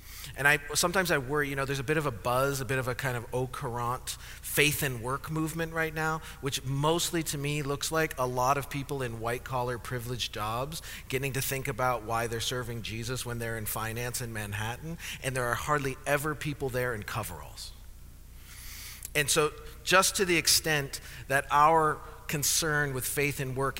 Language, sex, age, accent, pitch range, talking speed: English, male, 40-59, American, 115-150 Hz, 195 wpm